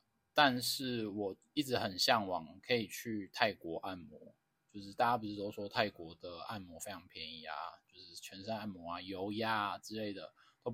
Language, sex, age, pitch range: Chinese, male, 20-39, 95-120 Hz